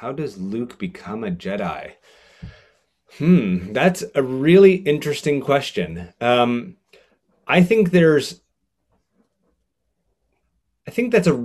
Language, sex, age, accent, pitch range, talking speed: English, male, 30-49, American, 105-170 Hz, 105 wpm